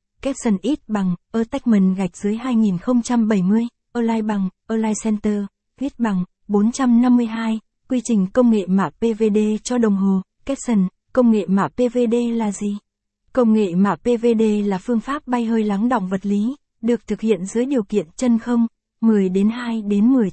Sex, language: female, Vietnamese